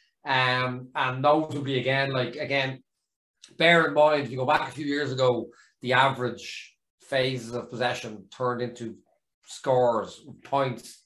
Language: English